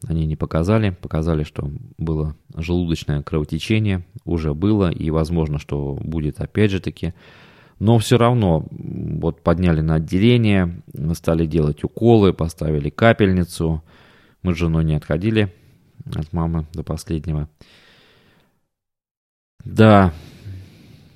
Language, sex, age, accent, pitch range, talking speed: Russian, male, 20-39, native, 80-100 Hz, 110 wpm